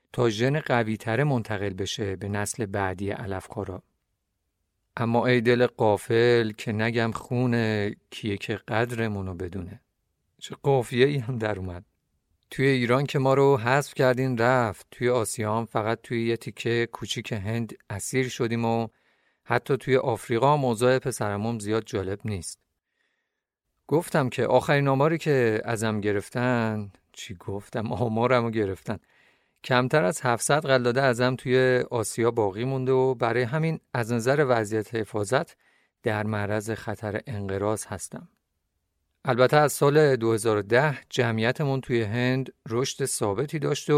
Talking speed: 130 wpm